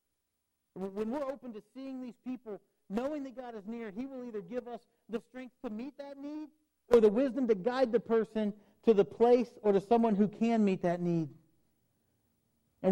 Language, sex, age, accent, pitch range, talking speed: English, male, 50-69, American, 155-215 Hz, 195 wpm